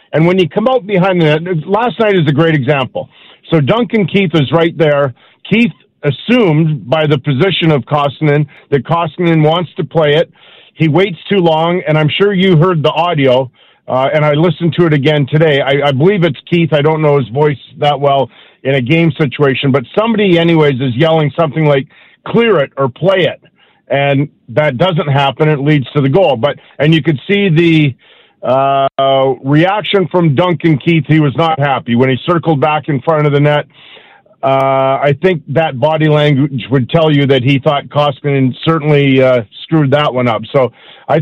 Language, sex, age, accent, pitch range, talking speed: English, male, 50-69, American, 145-180 Hz, 195 wpm